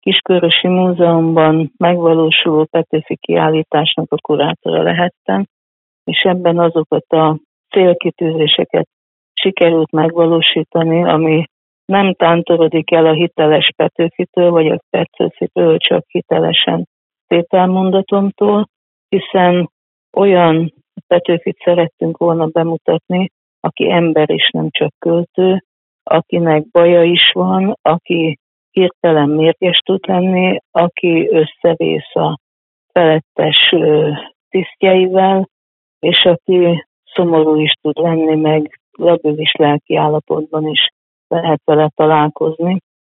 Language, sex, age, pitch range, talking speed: Hungarian, female, 50-69, 155-180 Hz, 95 wpm